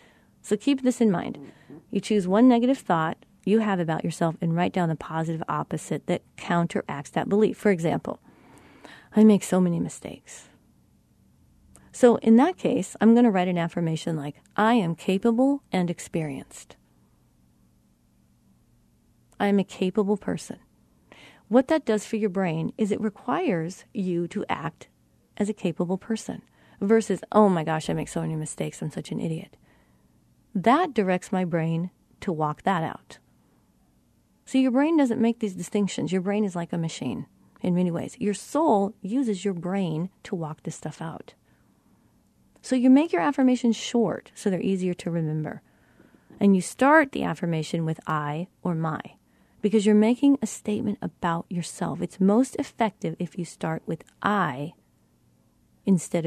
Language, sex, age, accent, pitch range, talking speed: English, female, 40-59, American, 165-220 Hz, 160 wpm